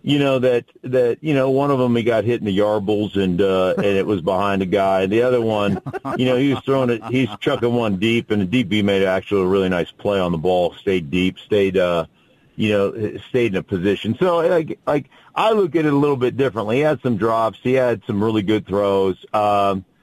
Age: 40-59